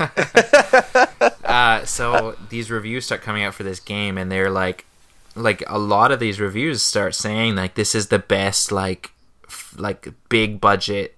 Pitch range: 95-110 Hz